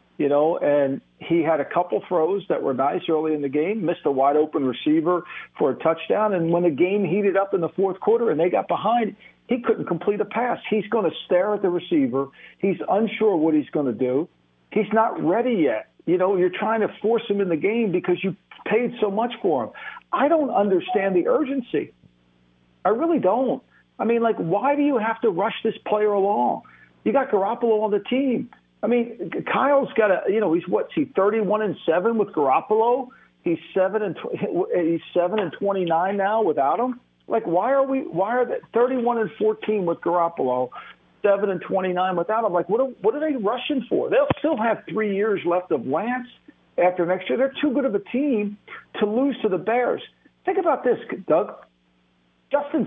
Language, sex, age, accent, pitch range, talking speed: English, male, 50-69, American, 175-240 Hz, 205 wpm